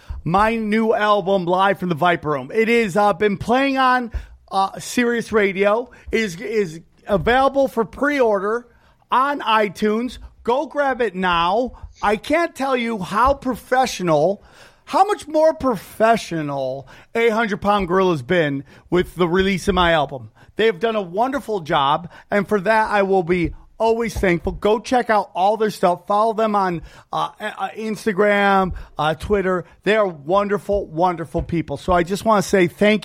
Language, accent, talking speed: English, American, 160 wpm